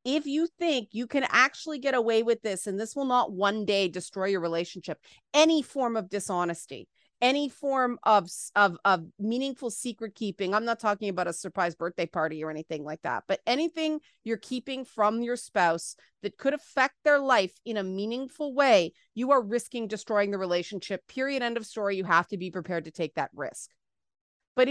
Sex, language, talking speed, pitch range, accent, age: female, English, 190 wpm, 195-260 Hz, American, 30-49